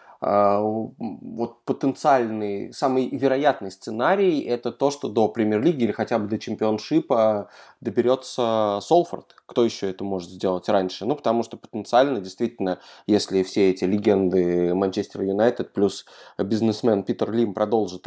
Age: 20-39